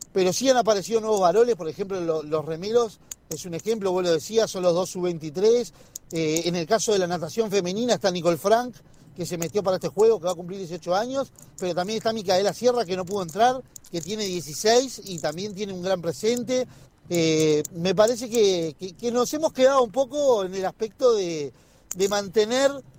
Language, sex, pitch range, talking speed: Spanish, male, 180-230 Hz, 205 wpm